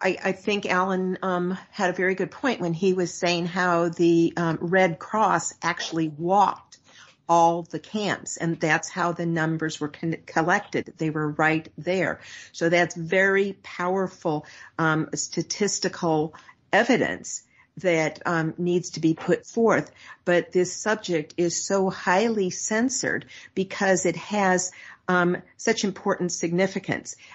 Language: English